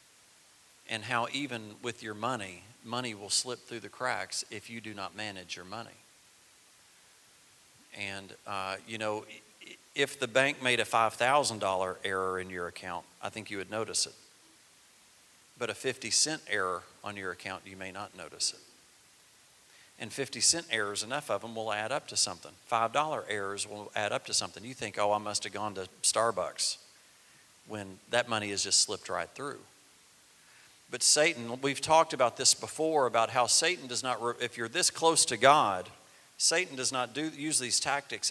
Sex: male